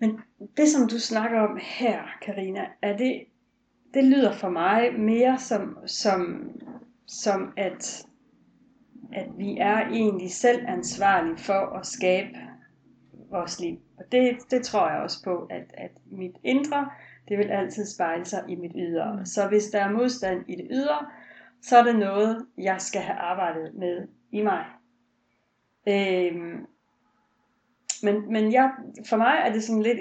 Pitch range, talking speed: 195-250 Hz, 150 wpm